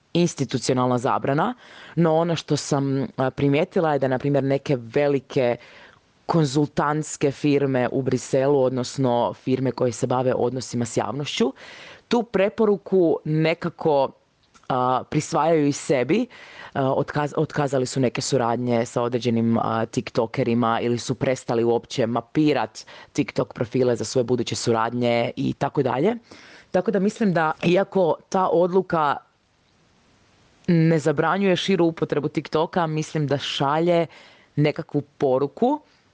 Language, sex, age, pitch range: Croatian, female, 20-39, 125-160 Hz